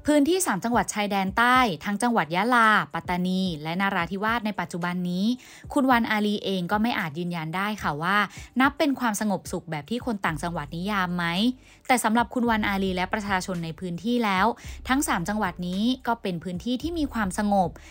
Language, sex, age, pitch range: Thai, female, 20-39, 175-230 Hz